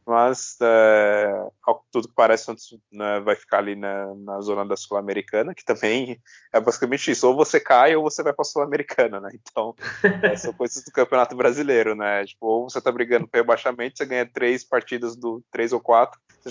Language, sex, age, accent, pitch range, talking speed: Portuguese, male, 20-39, Brazilian, 100-115 Hz, 190 wpm